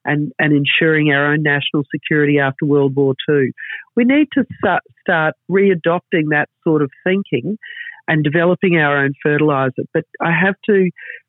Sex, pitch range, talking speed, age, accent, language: female, 150-185 Hz, 160 wpm, 50-69, Australian, English